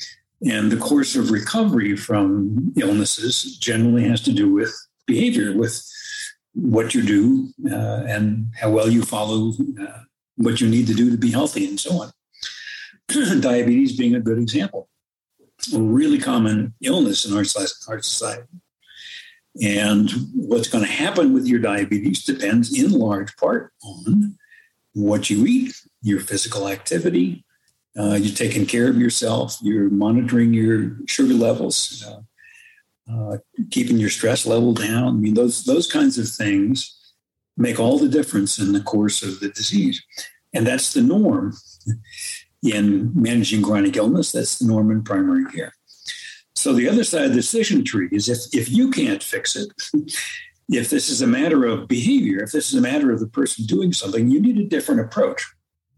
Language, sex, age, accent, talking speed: English, male, 60-79, American, 160 wpm